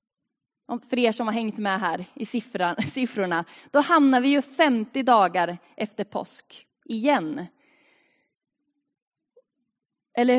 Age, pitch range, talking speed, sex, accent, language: 20-39, 195-265 Hz, 110 wpm, female, native, Swedish